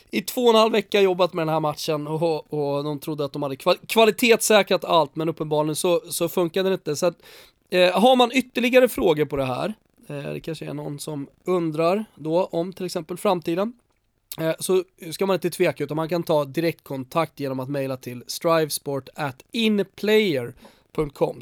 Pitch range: 155-215 Hz